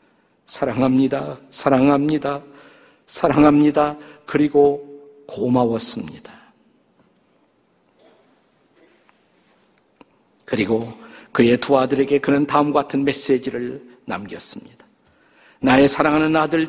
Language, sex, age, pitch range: Korean, male, 50-69, 140-175 Hz